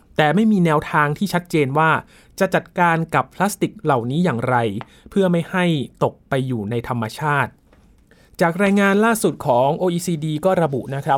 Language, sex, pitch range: Thai, male, 135-175 Hz